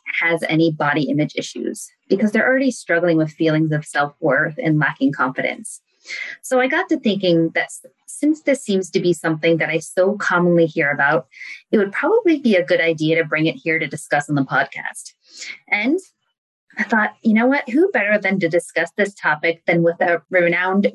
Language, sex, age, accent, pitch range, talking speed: English, female, 20-39, American, 165-220 Hz, 190 wpm